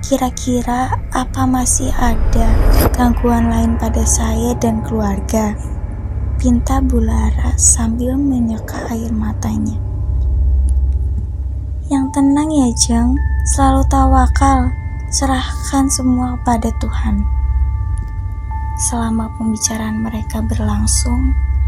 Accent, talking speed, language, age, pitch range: native, 85 wpm, Indonesian, 20-39, 75-105 Hz